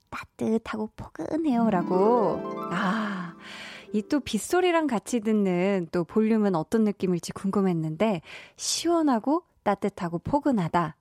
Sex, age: female, 20-39